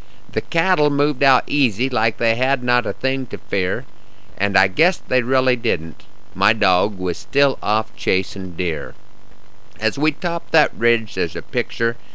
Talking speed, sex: 170 wpm, male